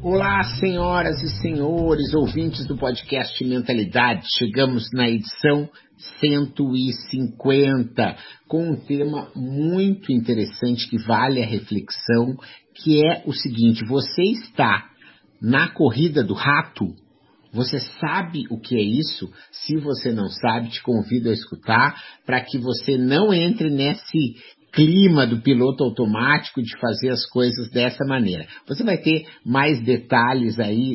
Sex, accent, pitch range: male, Brazilian, 120-155 Hz